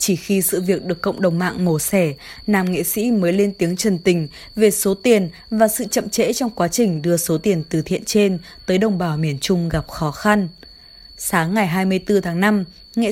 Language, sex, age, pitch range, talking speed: Vietnamese, female, 20-39, 170-215 Hz, 220 wpm